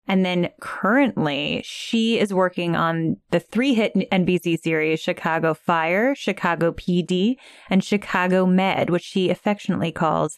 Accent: American